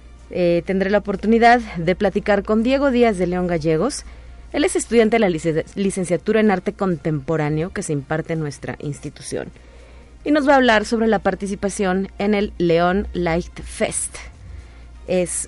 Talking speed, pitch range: 165 wpm, 165-225 Hz